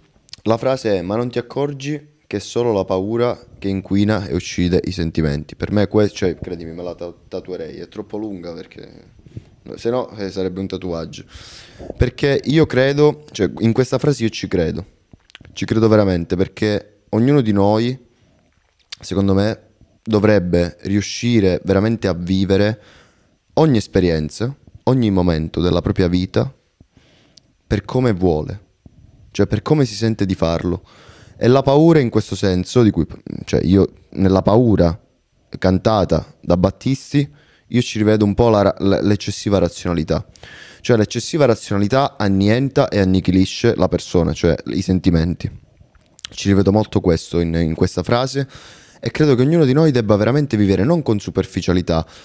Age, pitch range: 20-39, 90-120 Hz